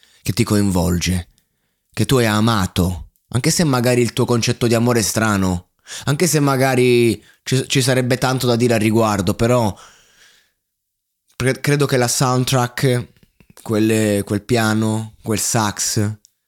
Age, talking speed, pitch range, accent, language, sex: 20-39, 130 wpm, 105-130 Hz, native, Italian, male